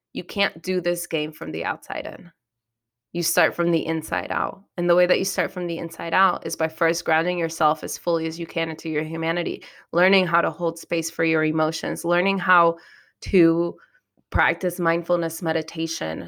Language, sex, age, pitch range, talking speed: English, female, 20-39, 165-180 Hz, 190 wpm